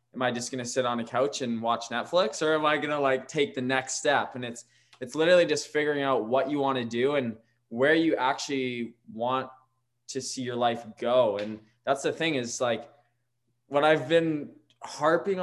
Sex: male